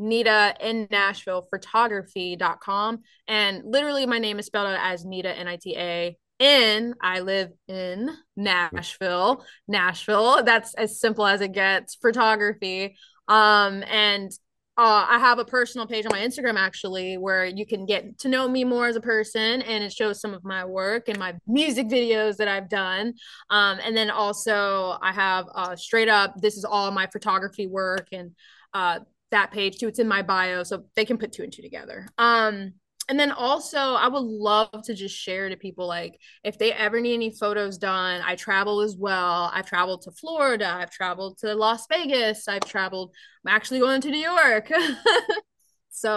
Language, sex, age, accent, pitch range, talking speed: English, female, 20-39, American, 190-230 Hz, 180 wpm